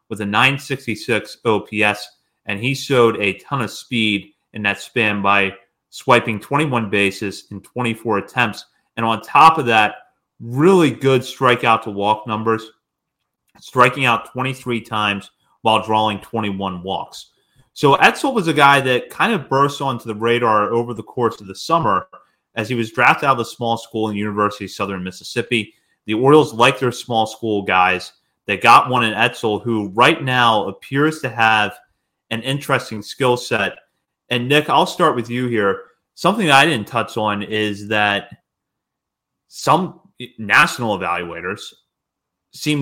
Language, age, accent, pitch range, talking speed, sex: English, 30-49, American, 105-130 Hz, 155 wpm, male